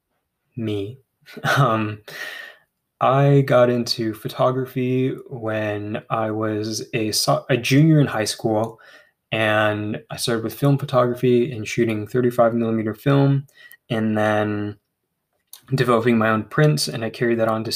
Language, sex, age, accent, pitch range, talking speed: English, male, 20-39, American, 110-130 Hz, 130 wpm